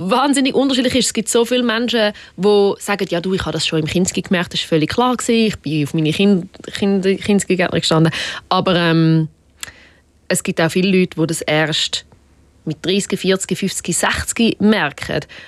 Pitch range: 165-205 Hz